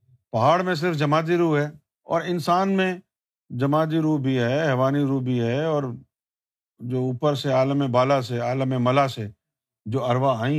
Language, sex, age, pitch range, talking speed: Urdu, male, 50-69, 135-195 Hz, 170 wpm